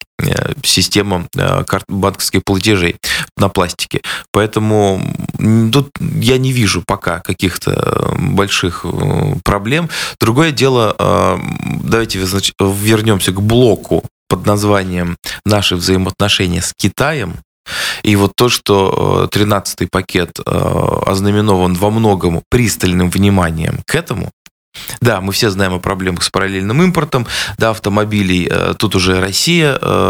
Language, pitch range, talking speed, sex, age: Russian, 95-110 Hz, 105 wpm, male, 20-39